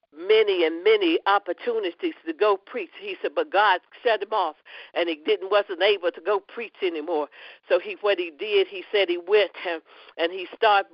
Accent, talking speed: American, 190 wpm